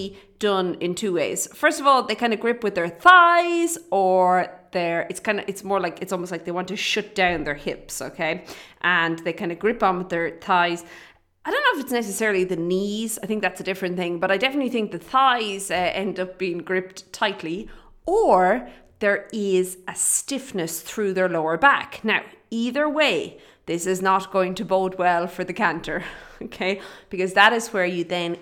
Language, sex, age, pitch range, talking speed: English, female, 30-49, 180-215 Hz, 205 wpm